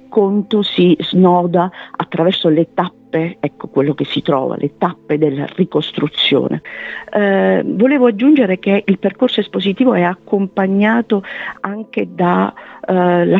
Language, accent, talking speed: Italian, native, 115 wpm